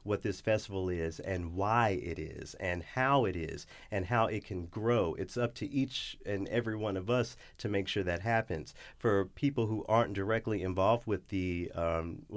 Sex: male